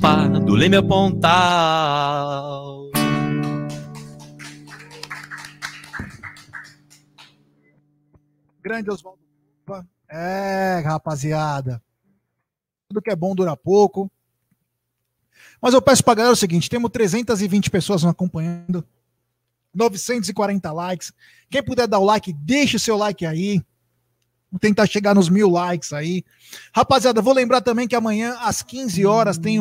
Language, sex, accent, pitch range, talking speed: Portuguese, male, Brazilian, 160-220 Hz, 110 wpm